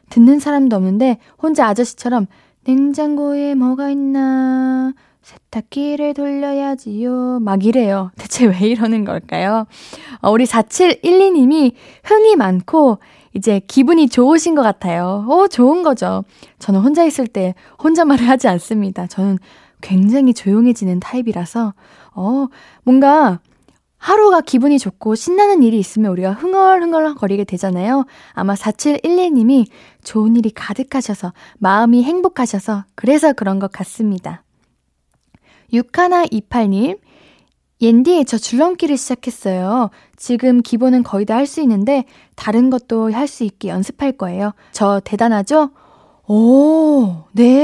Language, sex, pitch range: Korean, female, 205-280 Hz